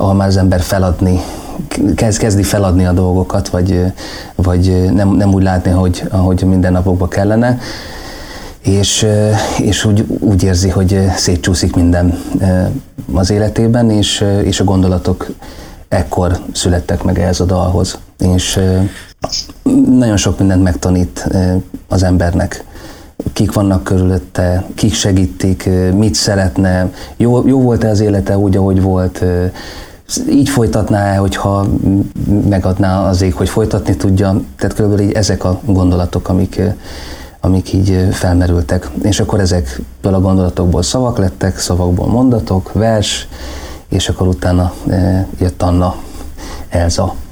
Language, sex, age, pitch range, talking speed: Hungarian, male, 30-49, 90-100 Hz, 120 wpm